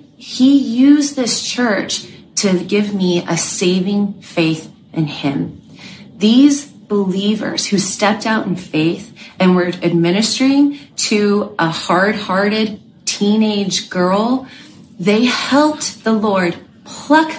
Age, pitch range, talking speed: 30-49, 180-220 Hz, 115 wpm